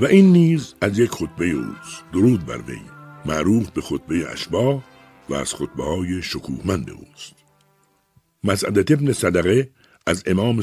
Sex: male